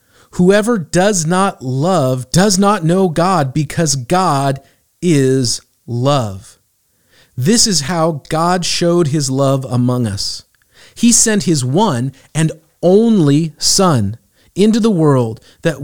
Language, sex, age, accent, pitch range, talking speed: English, male, 40-59, American, 125-175 Hz, 120 wpm